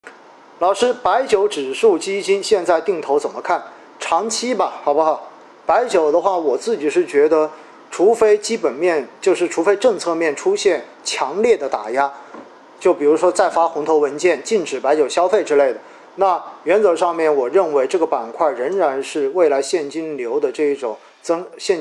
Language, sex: Chinese, male